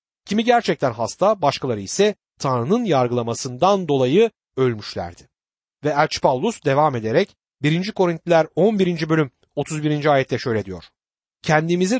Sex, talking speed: male, 115 wpm